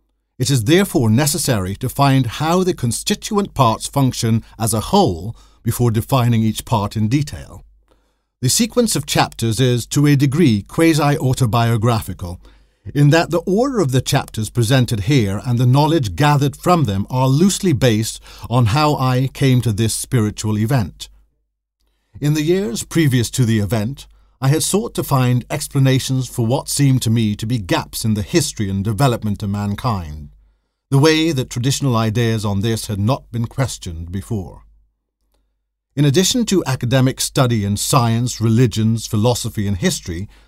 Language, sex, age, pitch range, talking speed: English, male, 50-69, 110-150 Hz, 155 wpm